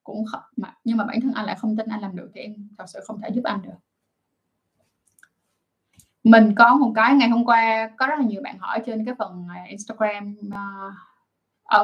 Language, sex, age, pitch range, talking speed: Vietnamese, female, 10-29, 210-250 Hz, 210 wpm